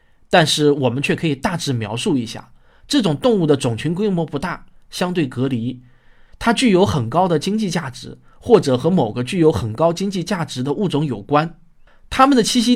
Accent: native